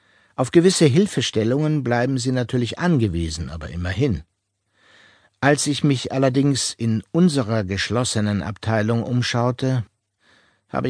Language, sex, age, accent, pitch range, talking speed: German, male, 60-79, German, 100-135 Hz, 105 wpm